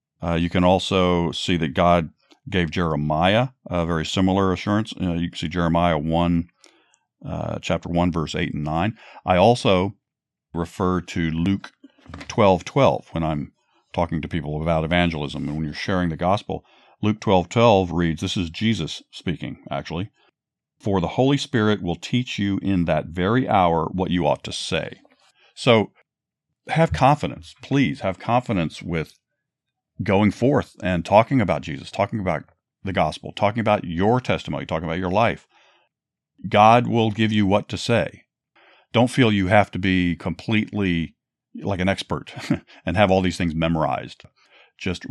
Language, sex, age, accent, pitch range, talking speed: English, male, 50-69, American, 85-100 Hz, 160 wpm